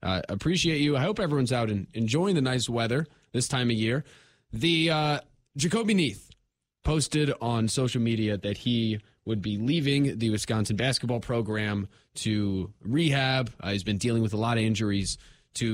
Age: 20-39